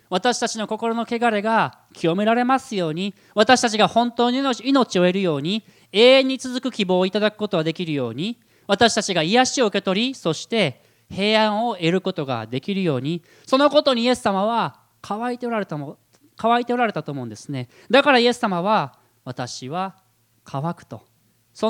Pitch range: 135-225 Hz